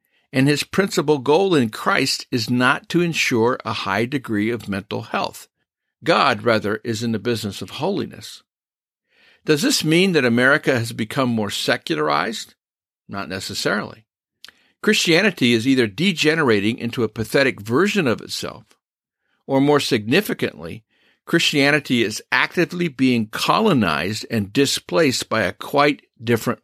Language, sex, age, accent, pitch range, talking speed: English, male, 50-69, American, 115-155 Hz, 135 wpm